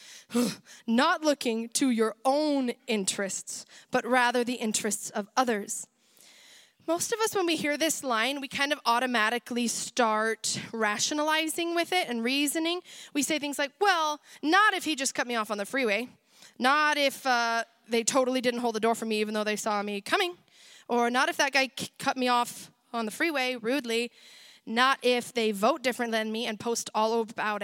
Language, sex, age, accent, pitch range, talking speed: English, female, 20-39, American, 225-285 Hz, 185 wpm